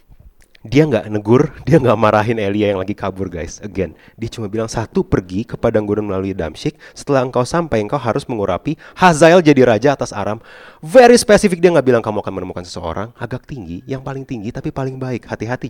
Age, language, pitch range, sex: 30-49, Indonesian, 105-140 Hz, male